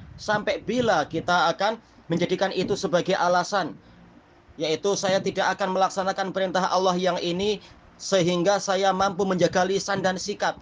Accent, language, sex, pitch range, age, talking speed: native, Indonesian, male, 170-200 Hz, 30-49, 135 wpm